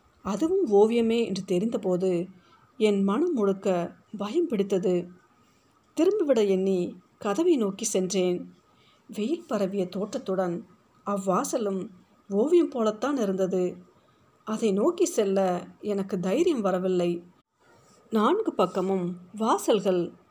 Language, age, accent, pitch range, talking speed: Tamil, 50-69, native, 185-230 Hz, 90 wpm